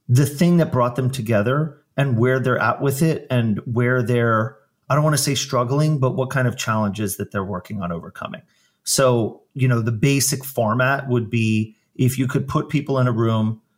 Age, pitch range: 30-49, 115-140 Hz